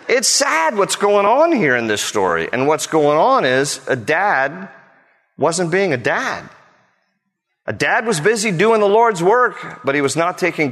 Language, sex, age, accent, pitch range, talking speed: English, male, 40-59, American, 110-150 Hz, 185 wpm